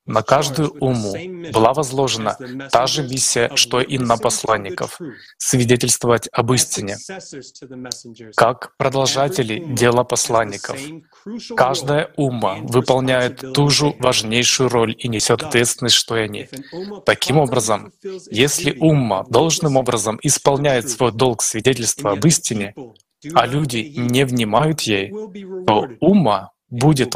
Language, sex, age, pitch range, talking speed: Russian, male, 20-39, 115-145 Hz, 115 wpm